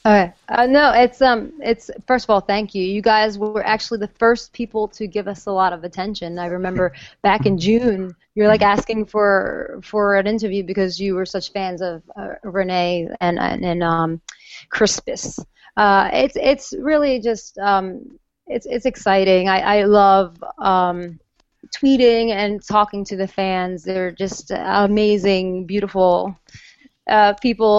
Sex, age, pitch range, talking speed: female, 30-49, 180-215 Hz, 160 wpm